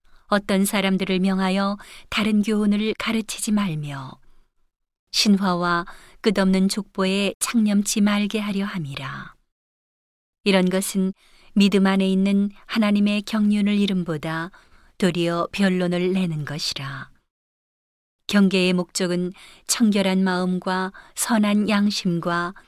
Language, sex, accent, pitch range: Korean, female, native, 185-205 Hz